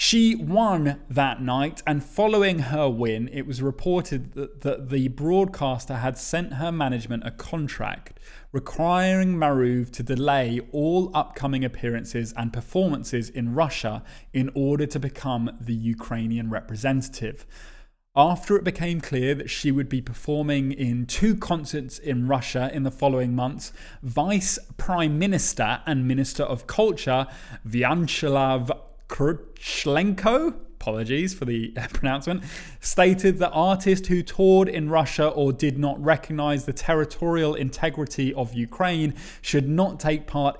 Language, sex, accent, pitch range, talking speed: English, male, British, 130-170 Hz, 130 wpm